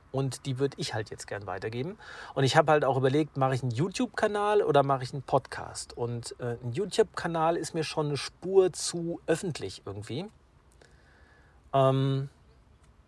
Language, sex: German, male